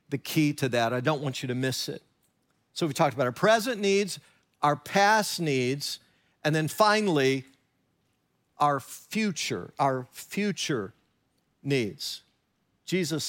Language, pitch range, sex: English, 140-195 Hz, male